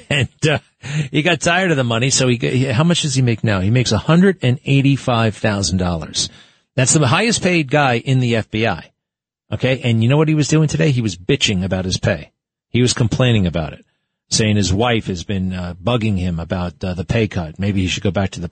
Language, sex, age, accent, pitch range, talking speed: English, male, 40-59, American, 105-130 Hz, 220 wpm